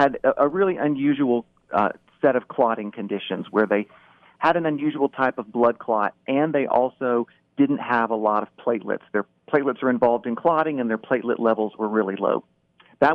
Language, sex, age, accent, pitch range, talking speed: English, male, 40-59, American, 115-140 Hz, 185 wpm